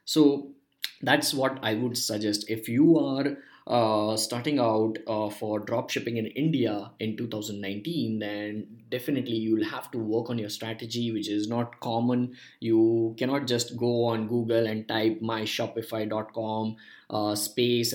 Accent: Indian